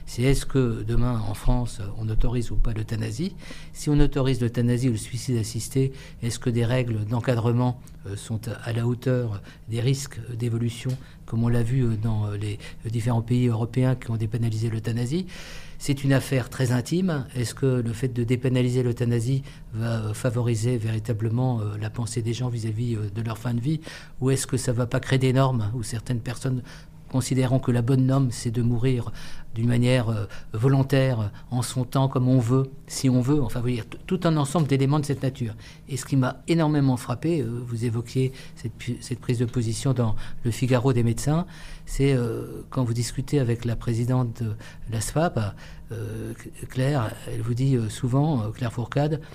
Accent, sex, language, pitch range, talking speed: French, male, French, 115-130 Hz, 185 wpm